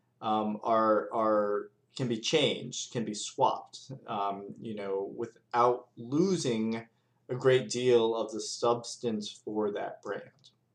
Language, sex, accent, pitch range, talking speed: English, male, American, 105-155 Hz, 130 wpm